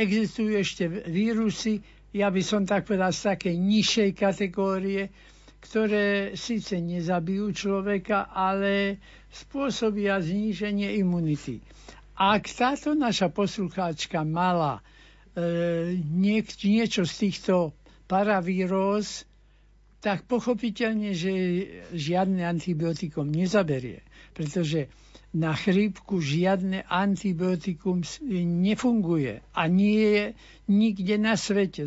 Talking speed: 90 wpm